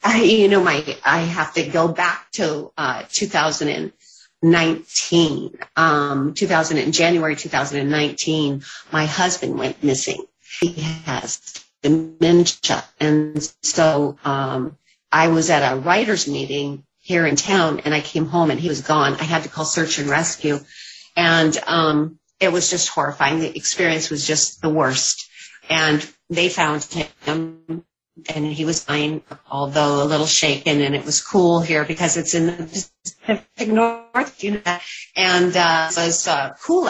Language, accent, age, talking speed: English, American, 50-69, 150 wpm